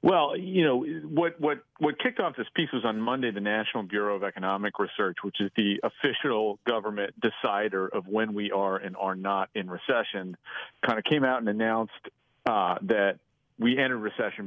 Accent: American